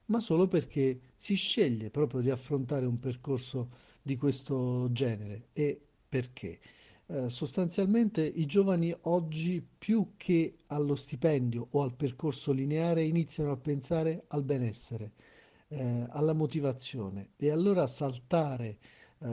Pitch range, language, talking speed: 125-160 Hz, Italian, 125 wpm